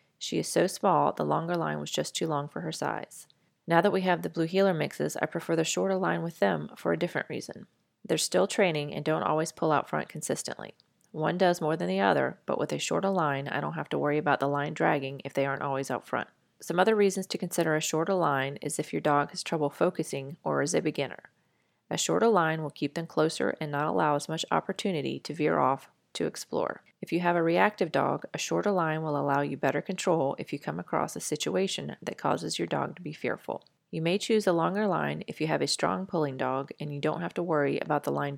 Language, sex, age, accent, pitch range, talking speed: English, female, 30-49, American, 145-175 Hz, 240 wpm